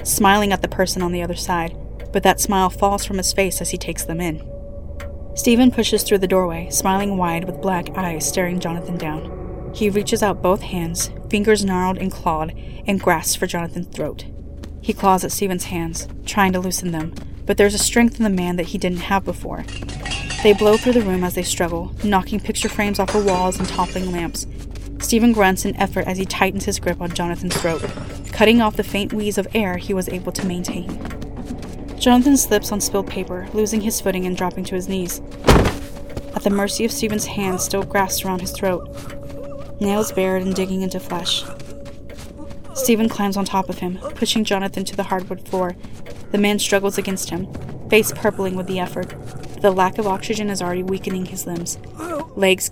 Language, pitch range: English, 175-205 Hz